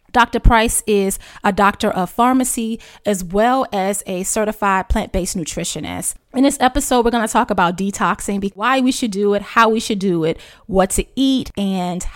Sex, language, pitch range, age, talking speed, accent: female, English, 185-235 Hz, 20-39, 185 wpm, American